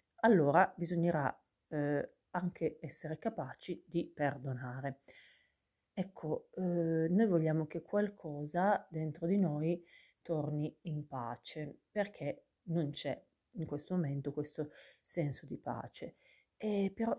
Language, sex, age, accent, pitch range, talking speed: Italian, female, 40-59, native, 145-180 Hz, 110 wpm